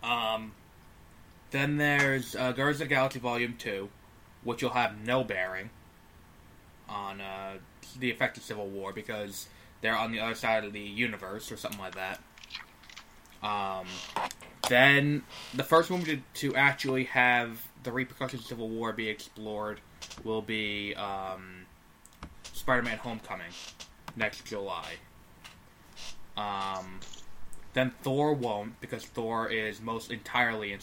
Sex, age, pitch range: male, 20-39, 90-120 Hz